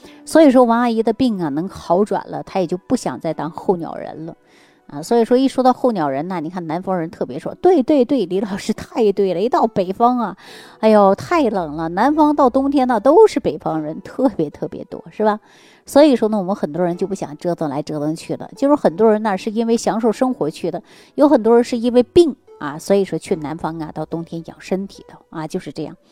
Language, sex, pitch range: Chinese, female, 170-245 Hz